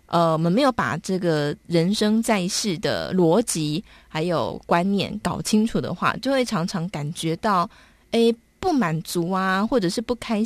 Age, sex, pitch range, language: 20-39, female, 165-210 Hz, Chinese